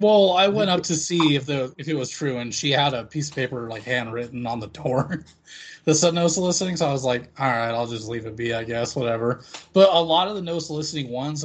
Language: English